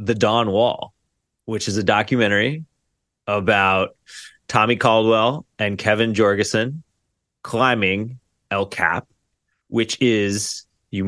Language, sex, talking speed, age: English, male, 105 wpm, 20-39